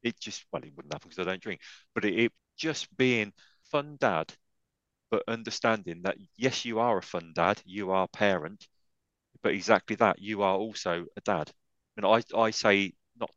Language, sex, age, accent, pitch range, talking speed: English, male, 30-49, British, 90-120 Hz, 195 wpm